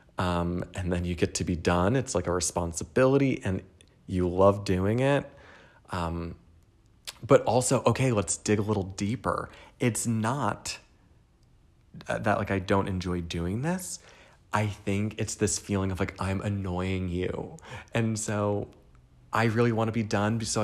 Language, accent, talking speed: English, American, 155 wpm